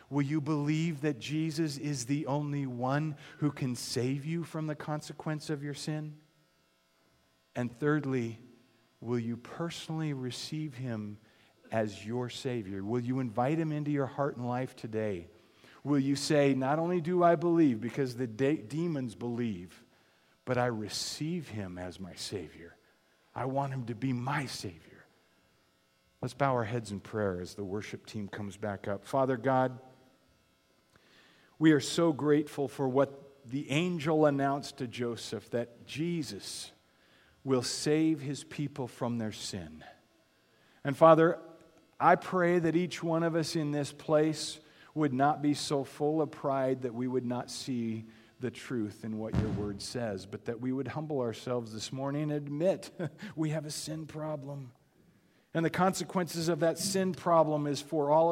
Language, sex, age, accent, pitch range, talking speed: English, male, 40-59, American, 120-155 Hz, 160 wpm